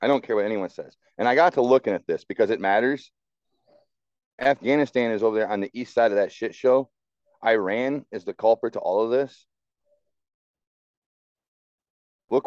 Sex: male